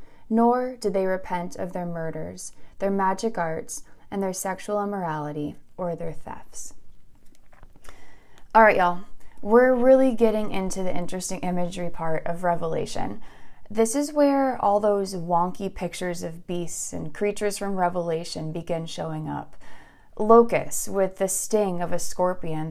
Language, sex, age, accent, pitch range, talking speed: English, female, 20-39, American, 170-210 Hz, 135 wpm